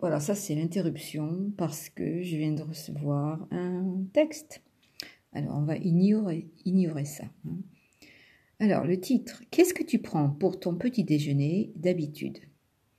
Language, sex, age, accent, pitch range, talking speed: French, female, 50-69, French, 155-200 Hz, 140 wpm